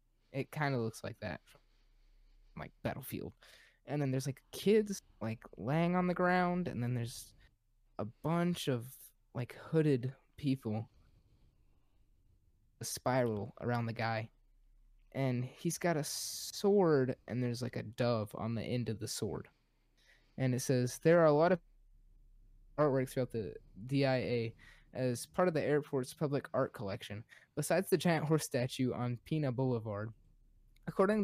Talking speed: 150 wpm